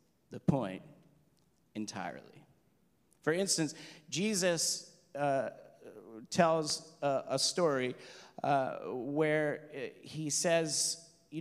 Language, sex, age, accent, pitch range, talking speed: English, male, 40-59, American, 125-165 Hz, 85 wpm